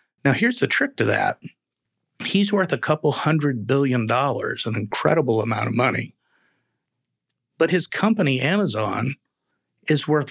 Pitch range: 120-150 Hz